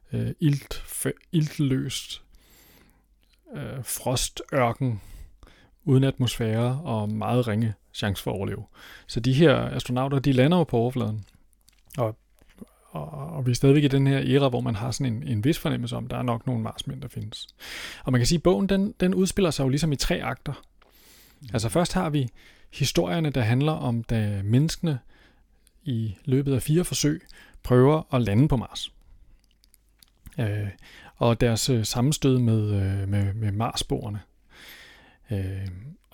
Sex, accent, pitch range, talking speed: male, native, 110-140 Hz, 160 wpm